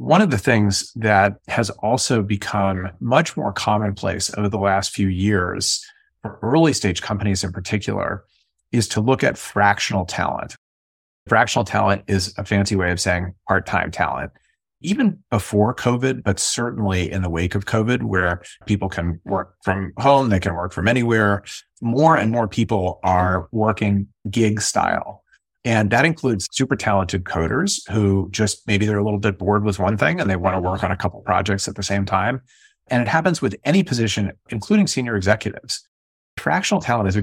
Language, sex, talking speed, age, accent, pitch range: English, male, 175 wpm, 30-49, American, 95-115 Hz